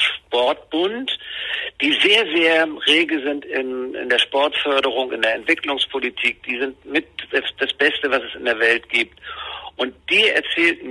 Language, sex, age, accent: German, male, 60-79, German